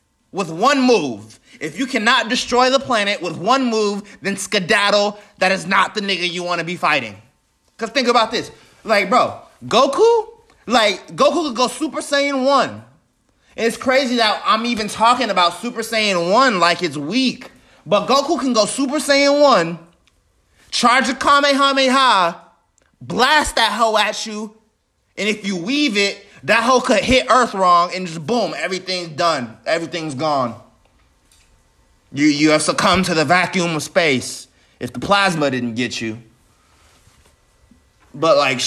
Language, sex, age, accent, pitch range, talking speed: English, male, 20-39, American, 165-240 Hz, 160 wpm